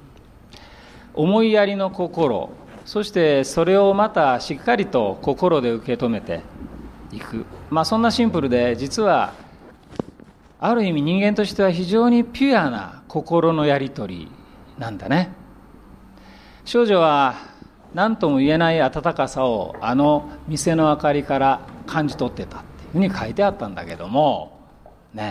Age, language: 40-59, Japanese